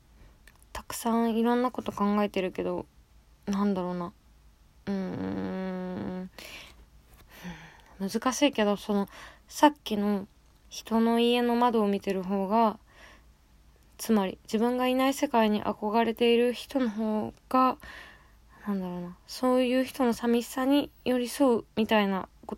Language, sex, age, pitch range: Japanese, female, 20-39, 190-245 Hz